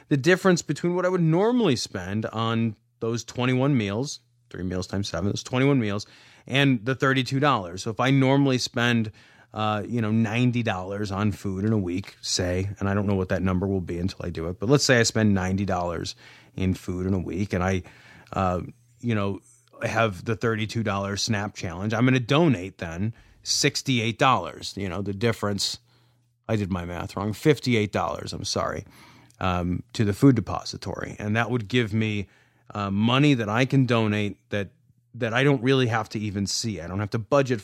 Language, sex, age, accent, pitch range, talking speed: English, male, 30-49, American, 100-125 Hz, 190 wpm